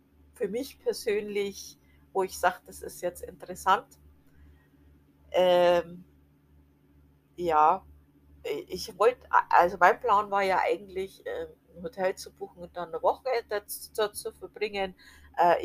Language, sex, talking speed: German, female, 125 wpm